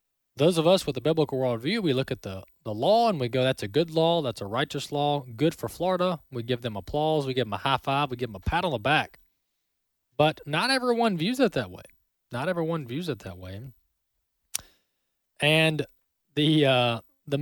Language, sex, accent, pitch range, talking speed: English, male, American, 125-185 Hz, 215 wpm